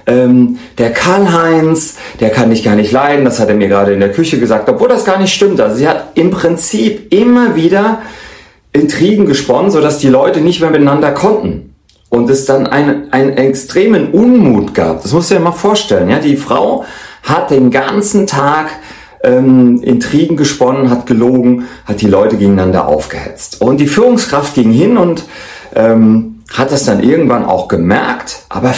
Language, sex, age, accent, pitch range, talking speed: German, male, 40-59, German, 115-165 Hz, 175 wpm